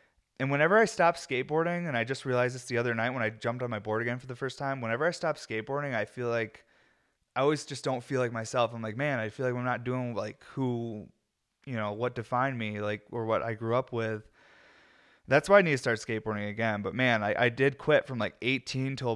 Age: 20-39